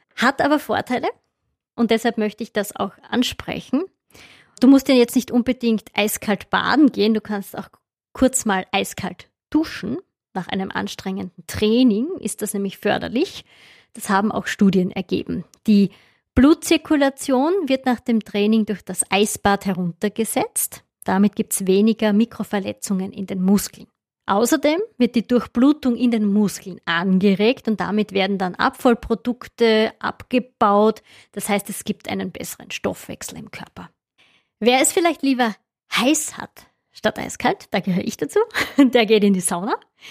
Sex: female